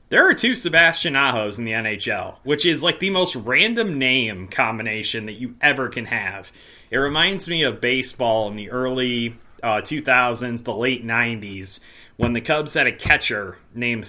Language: English